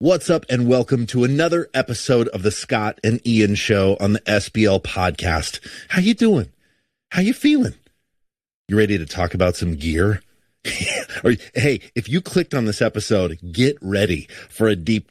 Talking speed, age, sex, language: 165 wpm, 40-59, male, English